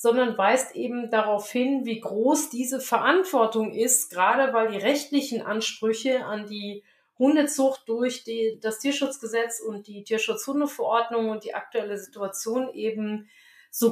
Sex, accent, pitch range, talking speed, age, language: female, German, 220-270 Hz, 130 wpm, 40-59, German